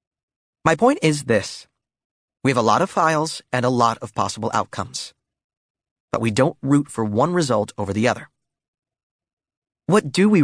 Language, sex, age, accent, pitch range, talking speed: English, male, 30-49, American, 110-150 Hz, 165 wpm